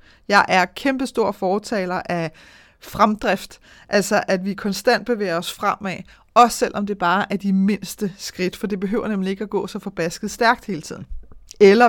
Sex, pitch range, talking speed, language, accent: female, 185-225 Hz, 170 wpm, Danish, native